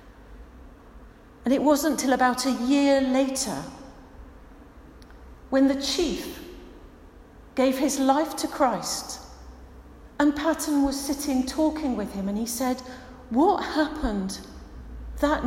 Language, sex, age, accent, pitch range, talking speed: English, female, 40-59, British, 185-270 Hz, 115 wpm